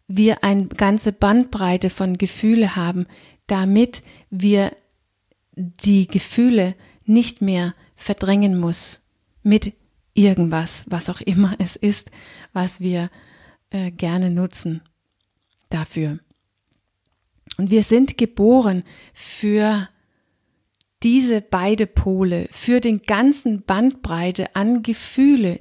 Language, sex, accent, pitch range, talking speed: German, female, German, 175-220 Hz, 100 wpm